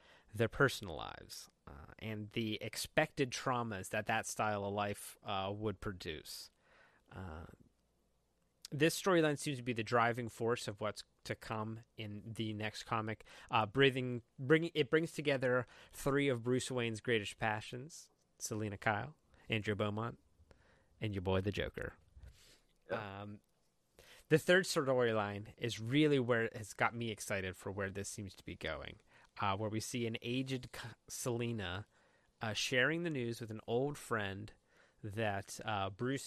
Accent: American